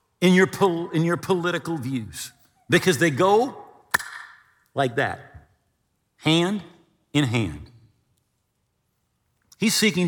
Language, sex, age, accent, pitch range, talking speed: English, male, 50-69, American, 110-165 Hz, 100 wpm